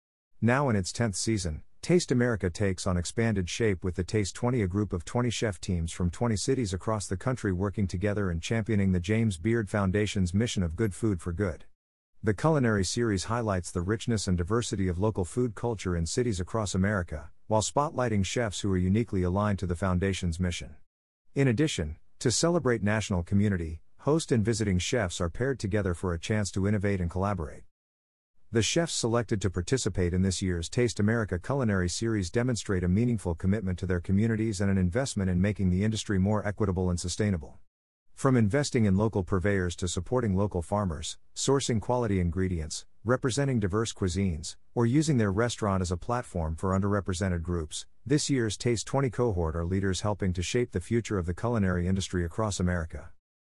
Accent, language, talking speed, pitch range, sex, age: American, English, 180 wpm, 90-115 Hz, male, 50-69